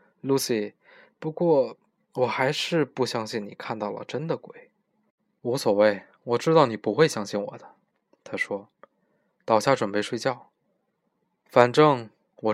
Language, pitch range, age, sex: Chinese, 115-160 Hz, 20-39, male